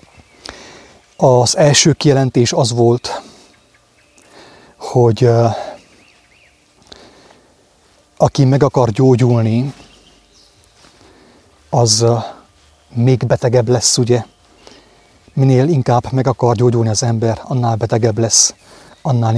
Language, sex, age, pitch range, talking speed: English, male, 30-49, 115-130 Hz, 80 wpm